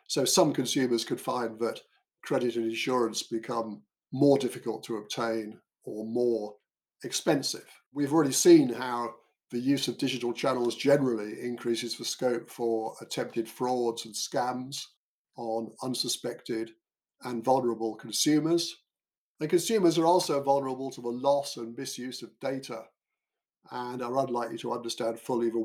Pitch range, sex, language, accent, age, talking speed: 115-140 Hz, male, English, British, 50-69, 140 wpm